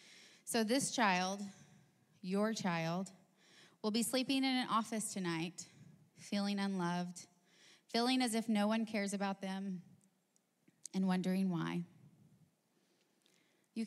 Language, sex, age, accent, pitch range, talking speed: English, female, 20-39, American, 185-220 Hz, 115 wpm